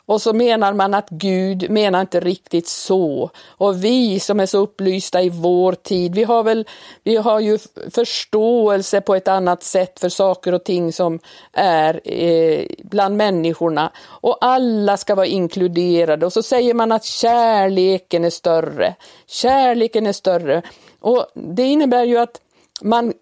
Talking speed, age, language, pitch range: 150 wpm, 50-69, Swedish, 180-235 Hz